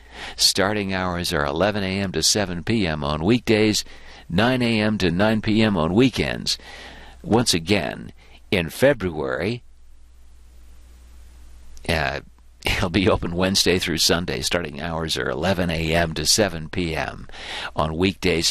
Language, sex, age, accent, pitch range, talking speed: English, male, 60-79, American, 70-110 Hz, 125 wpm